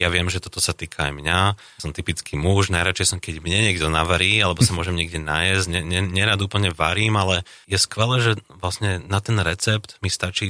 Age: 30-49